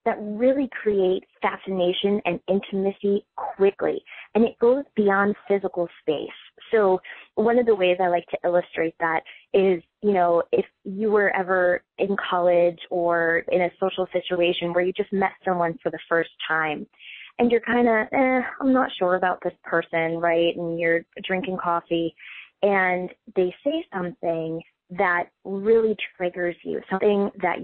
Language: English